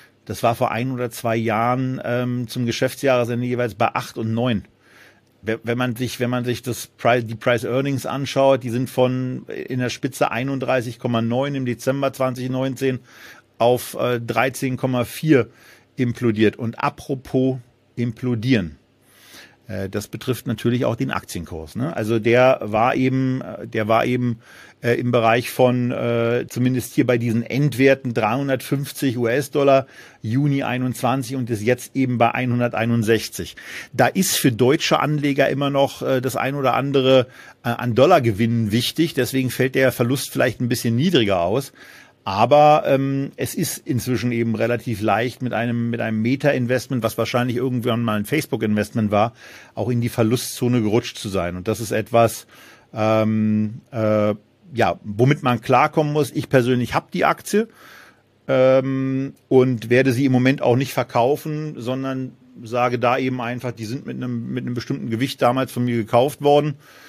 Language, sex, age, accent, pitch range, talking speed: German, male, 40-59, German, 115-130 Hz, 155 wpm